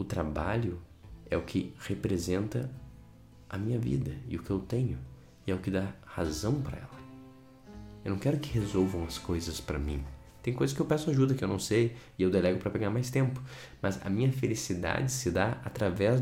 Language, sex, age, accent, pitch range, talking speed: Portuguese, male, 20-39, Brazilian, 75-115 Hz, 205 wpm